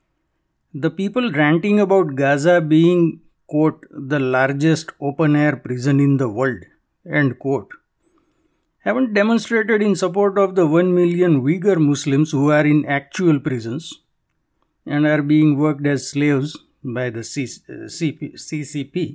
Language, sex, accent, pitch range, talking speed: English, male, Indian, 140-190 Hz, 125 wpm